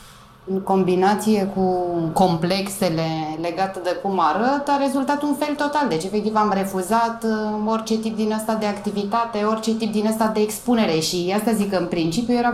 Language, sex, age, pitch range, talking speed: Romanian, female, 20-39, 160-220 Hz, 170 wpm